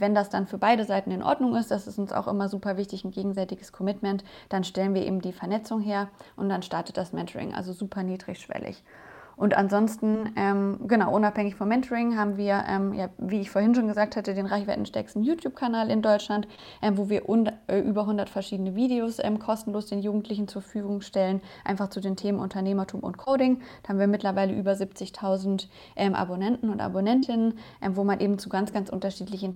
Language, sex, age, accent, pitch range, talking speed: German, female, 20-39, German, 195-215 Hz, 190 wpm